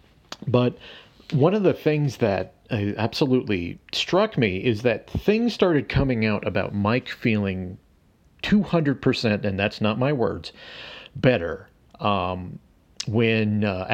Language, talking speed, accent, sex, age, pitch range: English, 130 wpm, American, male, 40-59, 100-130 Hz